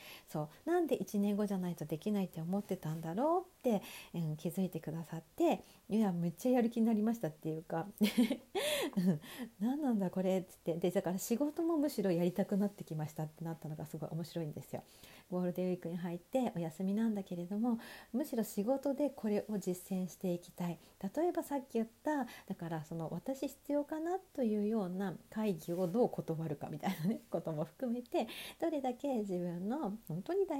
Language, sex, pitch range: Japanese, female, 170-245 Hz